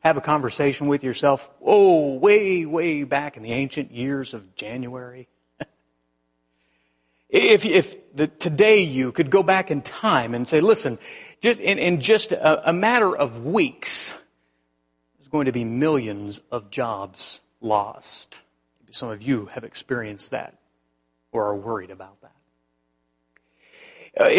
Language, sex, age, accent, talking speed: English, male, 40-59, American, 145 wpm